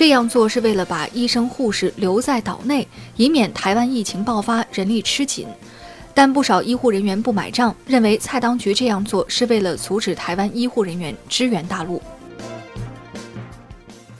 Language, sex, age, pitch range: Chinese, female, 20-39, 195-250 Hz